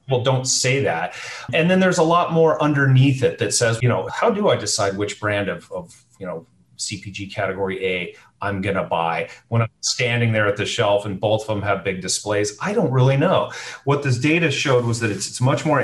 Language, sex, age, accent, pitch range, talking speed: English, male, 30-49, American, 105-135 Hz, 225 wpm